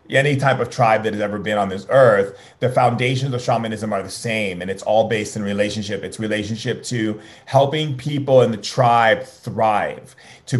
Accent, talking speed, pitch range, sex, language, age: American, 195 wpm, 110-130 Hz, male, English, 30-49